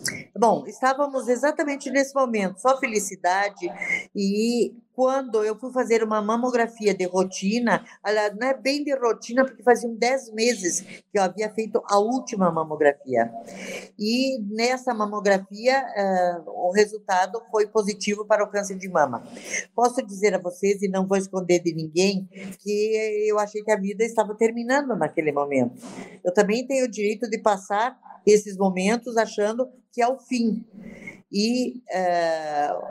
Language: Portuguese